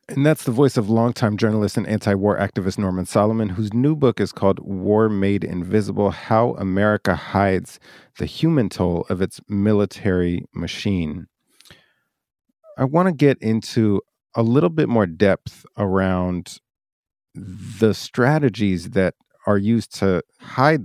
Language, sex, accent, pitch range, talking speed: English, male, American, 95-115 Hz, 140 wpm